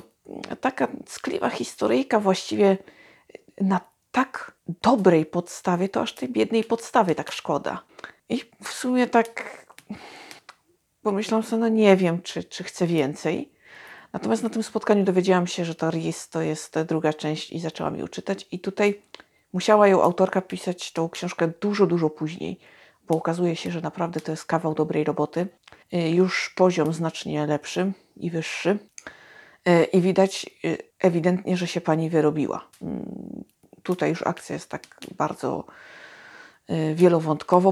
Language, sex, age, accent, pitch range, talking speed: Polish, female, 50-69, native, 160-185 Hz, 135 wpm